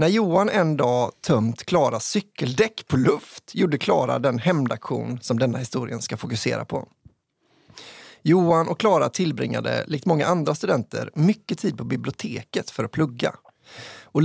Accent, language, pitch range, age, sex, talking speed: Swedish, English, 125-170 Hz, 30-49, male, 145 wpm